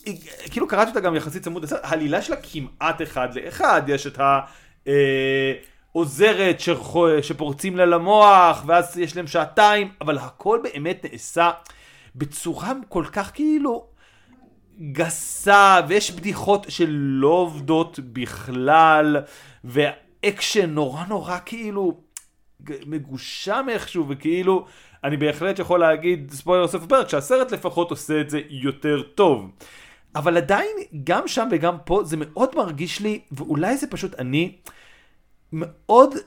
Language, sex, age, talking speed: Hebrew, male, 30-49, 115 wpm